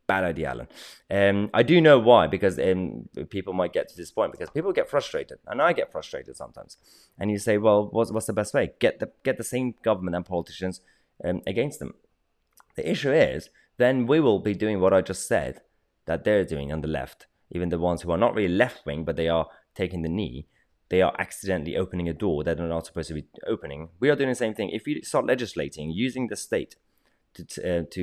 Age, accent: 20-39, British